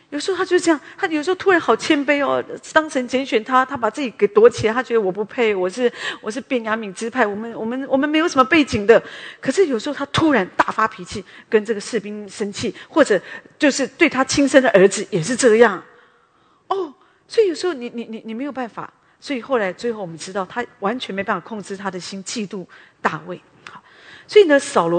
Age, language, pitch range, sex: 40-59, English, 185-260 Hz, female